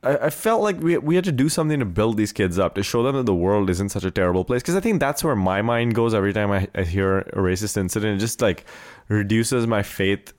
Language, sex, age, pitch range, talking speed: English, male, 20-39, 100-130 Hz, 275 wpm